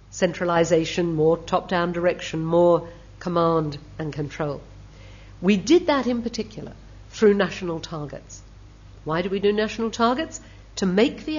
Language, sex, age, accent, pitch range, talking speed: English, female, 50-69, British, 150-215 Hz, 130 wpm